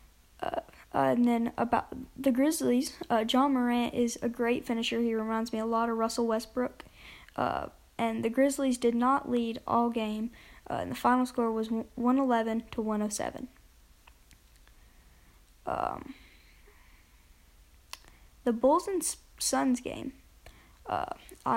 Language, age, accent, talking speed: English, 10-29, American, 130 wpm